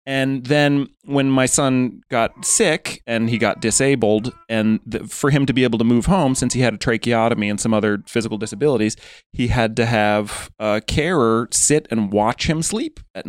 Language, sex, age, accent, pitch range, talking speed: English, male, 30-49, American, 105-130 Hz, 190 wpm